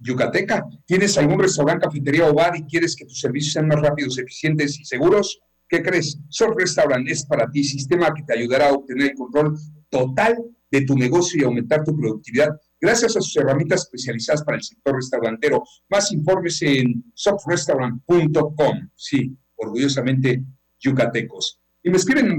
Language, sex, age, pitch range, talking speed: Spanish, male, 50-69, 130-160 Hz, 160 wpm